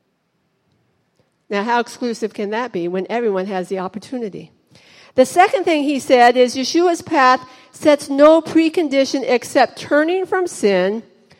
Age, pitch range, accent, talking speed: 50-69, 215-275 Hz, American, 135 wpm